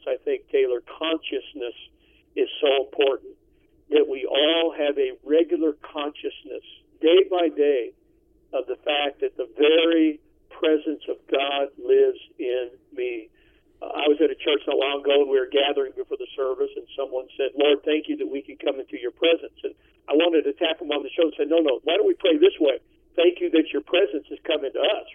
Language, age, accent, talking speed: English, 50-69, American, 205 wpm